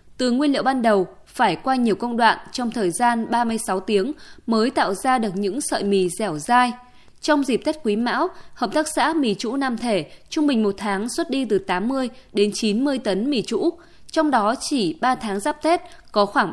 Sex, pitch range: female, 205-275 Hz